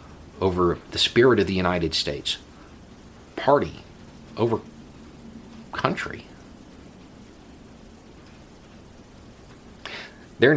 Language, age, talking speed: English, 40-59, 60 wpm